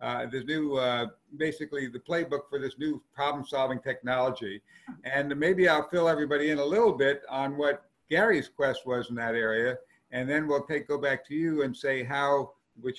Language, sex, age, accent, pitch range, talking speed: English, male, 60-79, American, 130-150 Hz, 195 wpm